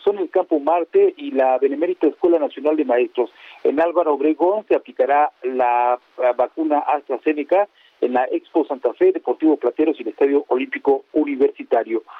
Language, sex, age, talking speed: Spanish, male, 50-69, 155 wpm